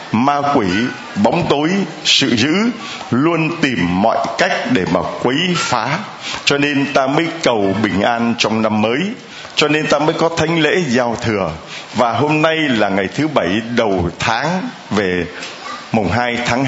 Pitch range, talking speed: 110-150 Hz, 165 wpm